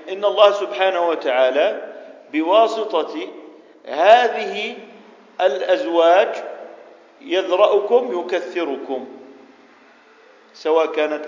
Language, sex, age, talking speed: Arabic, male, 50-69, 60 wpm